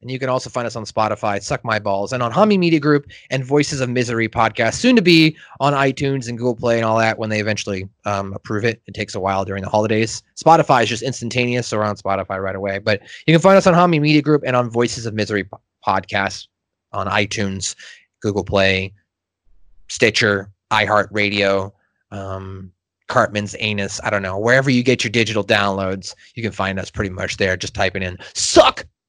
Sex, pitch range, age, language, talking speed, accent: male, 105-155 Hz, 30-49, English, 205 wpm, American